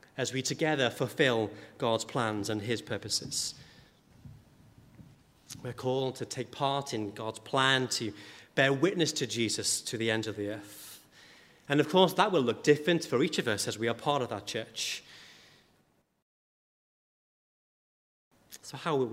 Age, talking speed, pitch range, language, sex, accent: 30-49, 155 wpm, 110-145 Hz, English, male, British